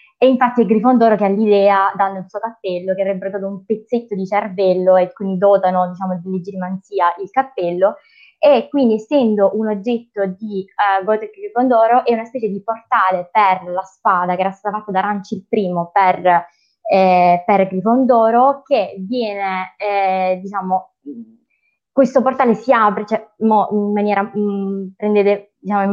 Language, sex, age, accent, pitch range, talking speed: Italian, female, 20-39, native, 185-225 Hz, 155 wpm